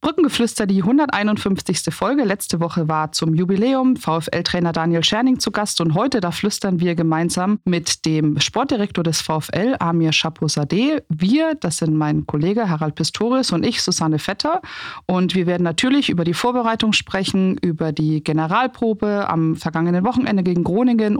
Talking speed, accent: 155 wpm, German